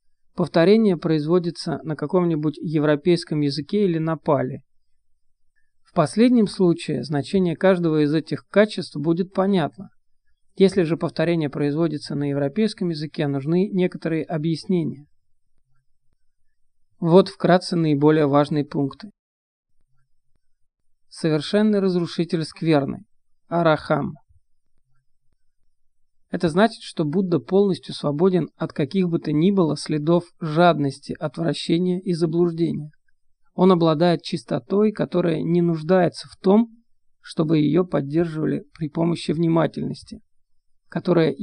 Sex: male